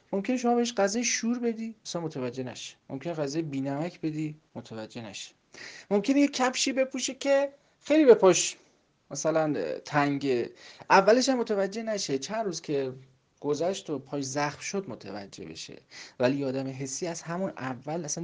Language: Persian